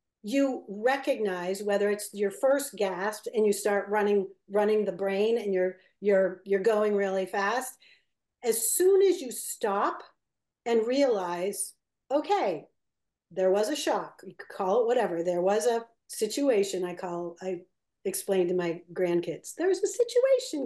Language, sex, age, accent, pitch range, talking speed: English, female, 50-69, American, 195-275 Hz, 155 wpm